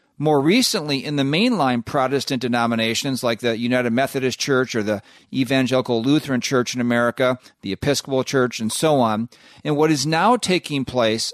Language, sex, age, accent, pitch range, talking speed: English, male, 40-59, American, 125-160 Hz, 165 wpm